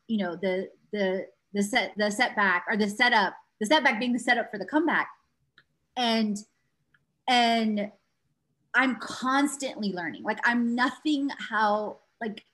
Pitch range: 205-265 Hz